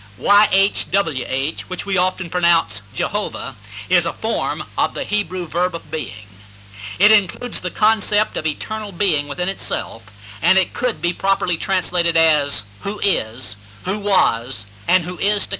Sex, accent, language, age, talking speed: male, American, English, 50-69, 150 wpm